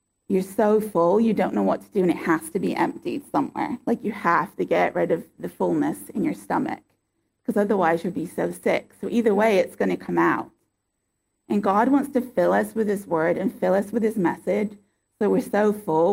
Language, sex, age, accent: English, female, 30-49, American